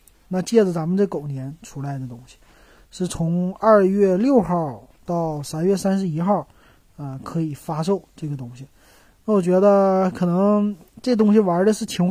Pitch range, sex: 140-195 Hz, male